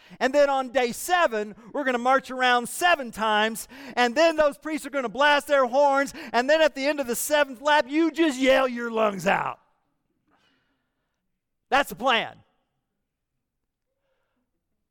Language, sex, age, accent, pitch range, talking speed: English, male, 50-69, American, 180-300 Hz, 160 wpm